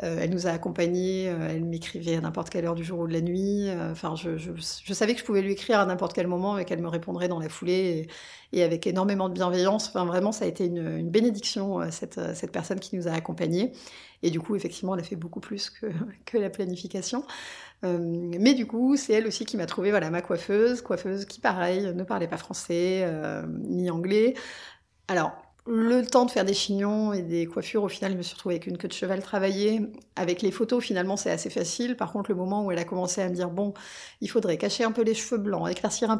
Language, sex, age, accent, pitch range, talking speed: French, female, 40-59, French, 175-210 Hz, 240 wpm